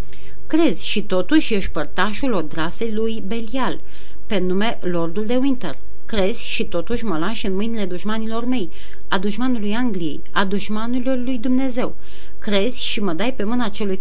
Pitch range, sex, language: 180-230 Hz, female, Romanian